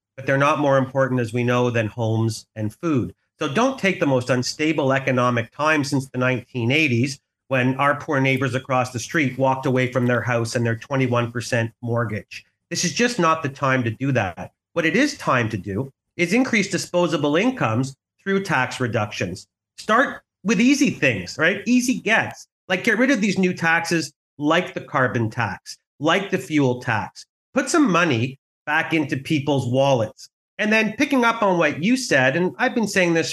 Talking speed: 185 wpm